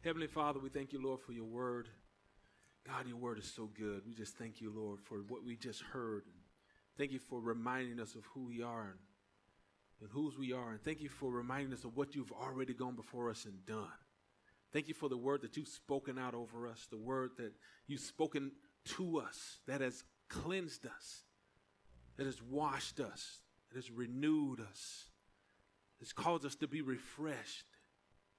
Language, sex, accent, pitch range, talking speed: English, male, American, 110-145 Hz, 190 wpm